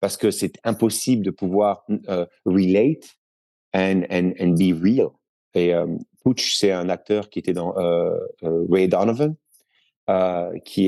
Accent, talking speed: French, 155 wpm